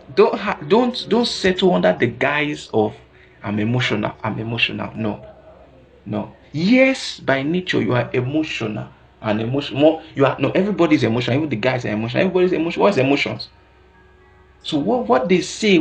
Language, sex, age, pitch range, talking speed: English, male, 50-69, 115-175 Hz, 155 wpm